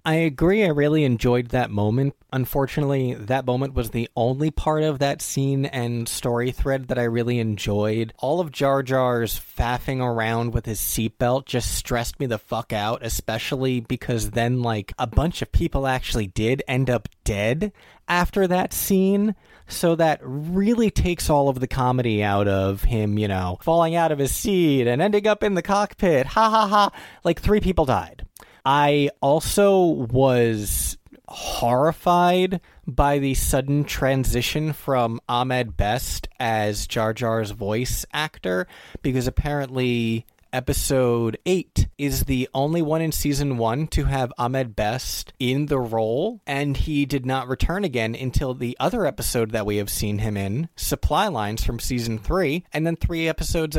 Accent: American